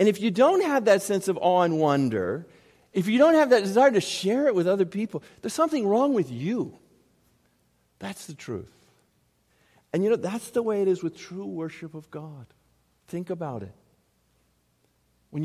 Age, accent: 50-69, American